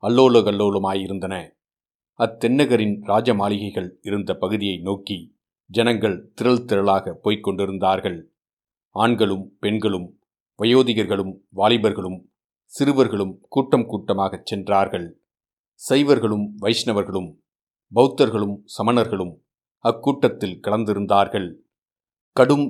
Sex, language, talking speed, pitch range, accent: male, Tamil, 65 wpm, 100-120 Hz, native